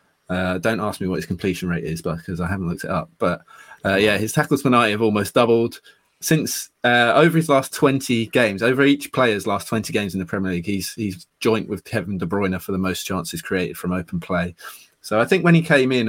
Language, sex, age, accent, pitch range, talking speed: English, male, 20-39, British, 100-130 Hz, 240 wpm